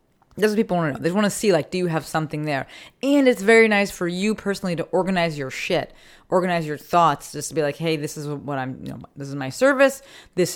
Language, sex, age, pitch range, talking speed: English, female, 30-49, 155-210 Hz, 265 wpm